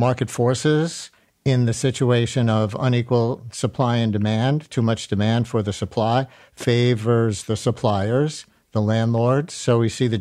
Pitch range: 115-135 Hz